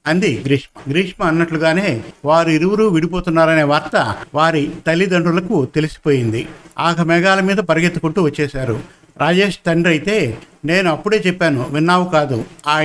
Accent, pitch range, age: native, 155-185 Hz, 50-69